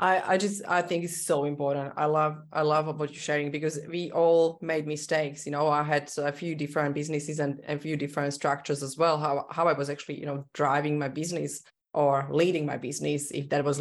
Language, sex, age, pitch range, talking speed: English, female, 20-39, 145-165 Hz, 220 wpm